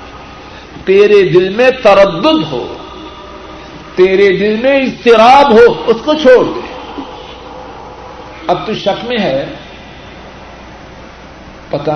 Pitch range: 165-245 Hz